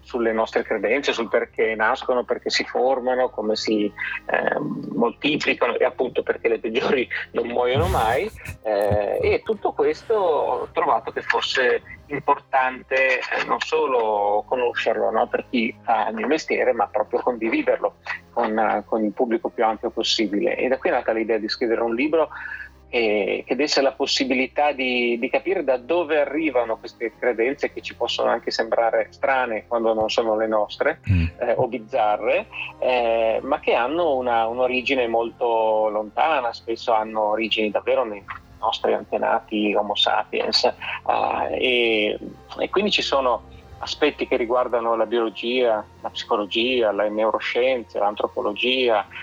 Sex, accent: male, native